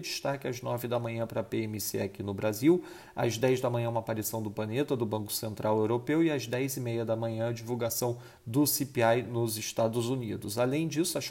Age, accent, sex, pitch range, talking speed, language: 40-59, Brazilian, male, 110-130 Hz, 210 wpm, Portuguese